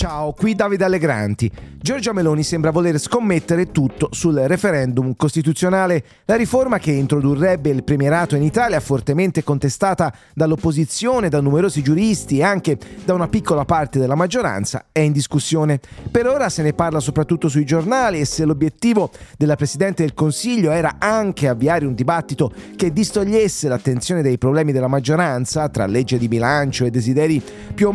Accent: Italian